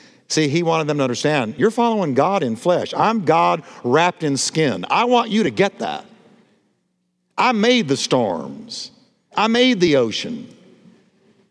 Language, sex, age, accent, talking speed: English, male, 50-69, American, 155 wpm